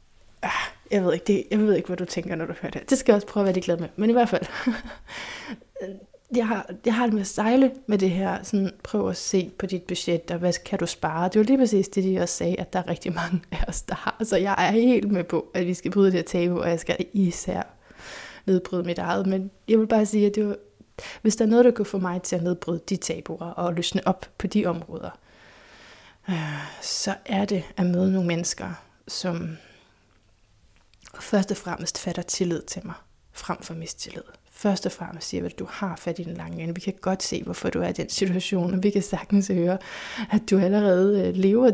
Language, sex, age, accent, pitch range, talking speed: Danish, female, 20-39, native, 170-205 Hz, 230 wpm